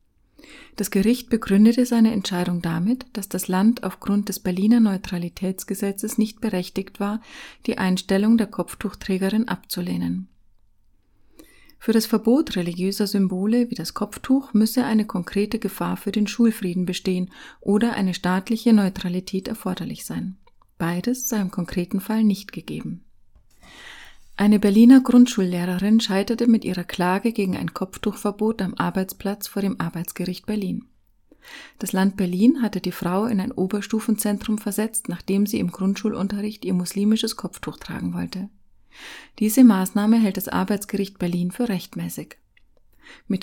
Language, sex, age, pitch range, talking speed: German, female, 30-49, 185-220 Hz, 130 wpm